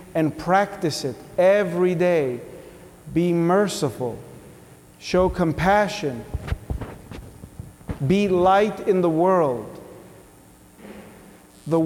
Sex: male